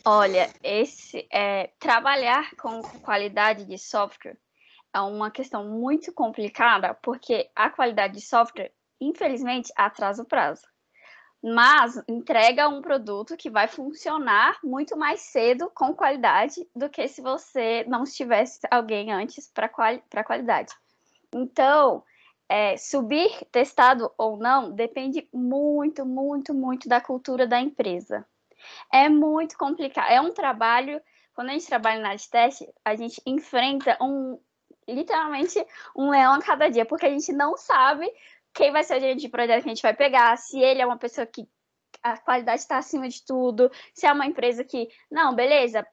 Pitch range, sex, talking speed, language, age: 235-305 Hz, female, 150 wpm, Portuguese, 10-29